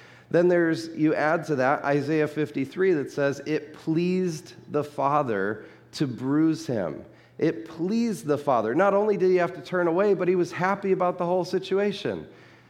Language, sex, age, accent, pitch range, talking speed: English, male, 40-59, American, 120-165 Hz, 175 wpm